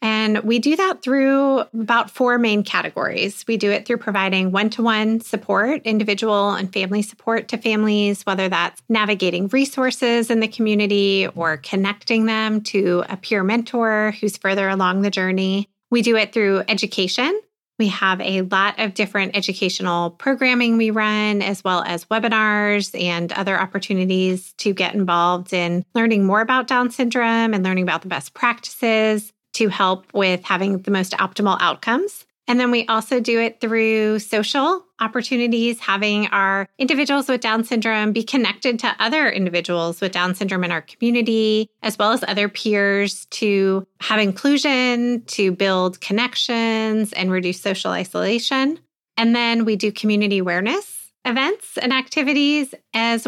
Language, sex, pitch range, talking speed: English, female, 195-235 Hz, 155 wpm